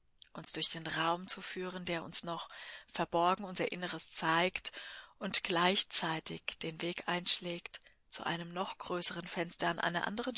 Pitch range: 170-195 Hz